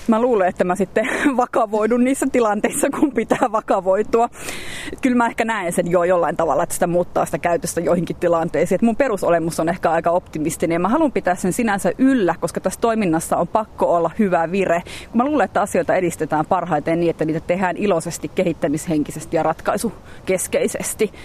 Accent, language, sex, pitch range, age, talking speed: native, Finnish, female, 175-255 Hz, 30-49, 175 wpm